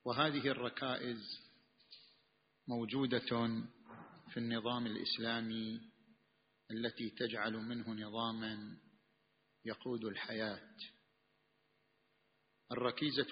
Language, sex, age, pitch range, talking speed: Arabic, male, 50-69, 115-130 Hz, 60 wpm